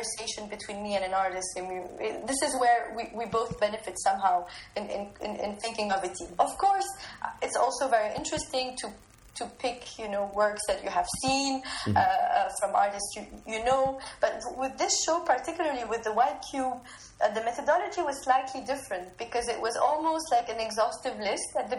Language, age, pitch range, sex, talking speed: English, 20-39, 215-280 Hz, female, 185 wpm